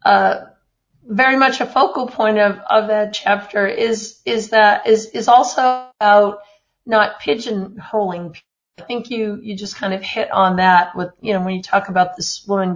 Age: 50-69